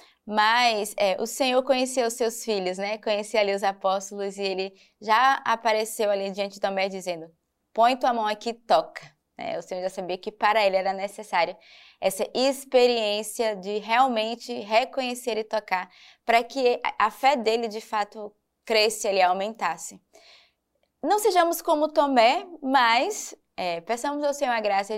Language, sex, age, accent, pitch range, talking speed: Portuguese, female, 20-39, Brazilian, 205-245 Hz, 160 wpm